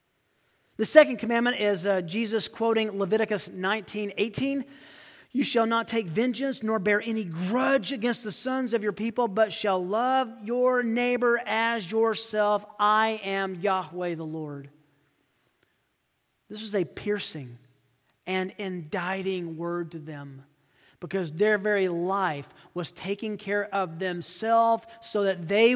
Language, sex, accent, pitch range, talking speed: English, male, American, 170-225 Hz, 135 wpm